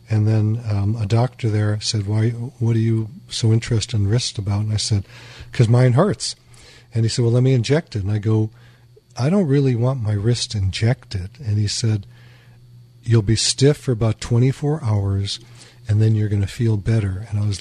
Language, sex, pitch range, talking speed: English, male, 110-125 Hz, 205 wpm